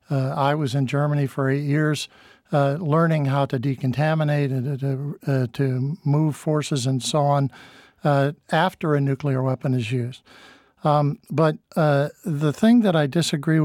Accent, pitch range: American, 135-155 Hz